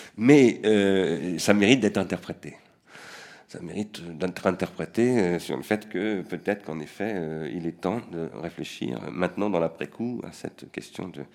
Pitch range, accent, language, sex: 85-105 Hz, French, French, male